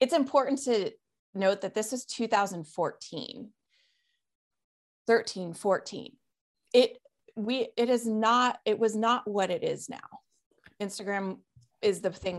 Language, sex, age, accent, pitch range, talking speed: English, female, 30-49, American, 180-240 Hz, 125 wpm